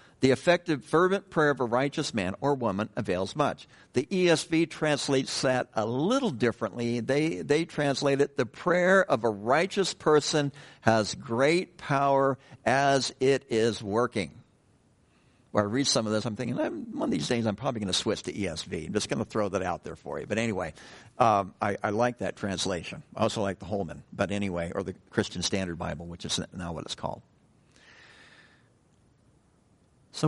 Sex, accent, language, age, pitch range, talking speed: male, American, English, 60-79, 120-155 Hz, 185 wpm